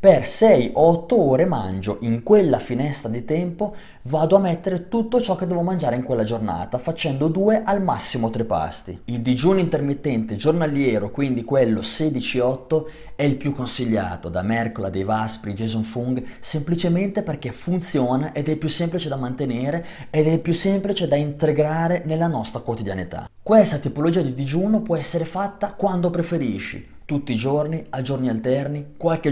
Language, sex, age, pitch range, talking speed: Italian, male, 20-39, 115-170 Hz, 160 wpm